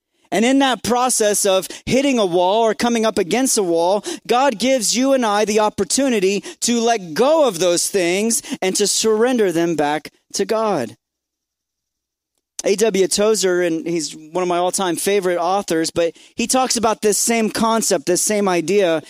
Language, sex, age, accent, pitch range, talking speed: English, male, 30-49, American, 180-235 Hz, 170 wpm